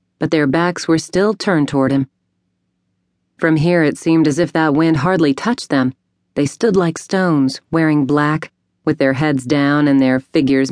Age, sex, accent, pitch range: 40-59, female, American, 140-160 Hz